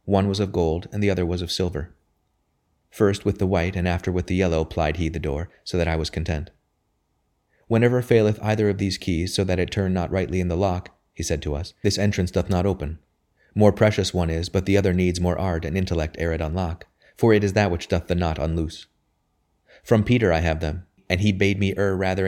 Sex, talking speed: male, 235 wpm